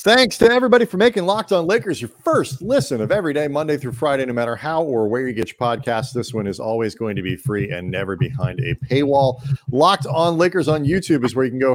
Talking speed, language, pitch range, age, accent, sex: 250 wpm, English, 120-155 Hz, 40-59, American, male